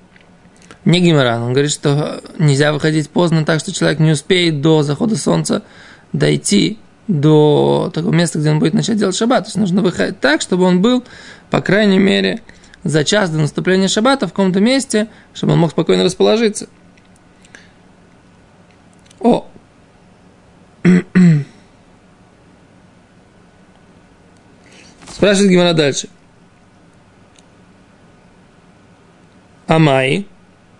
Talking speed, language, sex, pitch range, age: 105 wpm, Russian, male, 150-195 Hz, 20-39